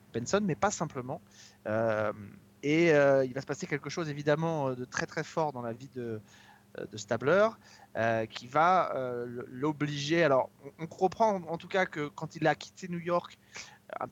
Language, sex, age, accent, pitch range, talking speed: French, male, 20-39, French, 125-175 Hz, 190 wpm